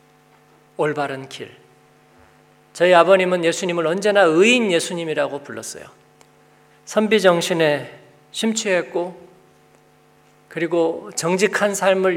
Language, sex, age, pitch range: Korean, male, 40-59, 155-200 Hz